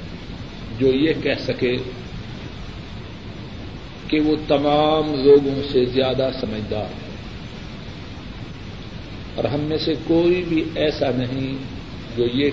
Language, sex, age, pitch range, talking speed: Urdu, male, 50-69, 125-150 Hz, 105 wpm